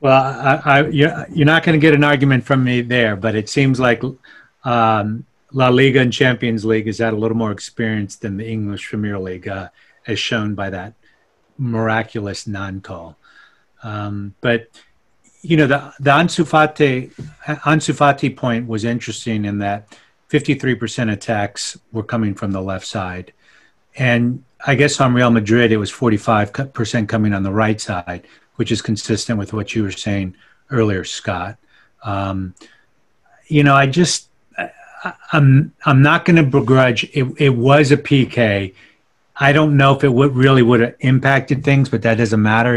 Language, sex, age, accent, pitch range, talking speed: English, male, 40-59, American, 105-135 Hz, 165 wpm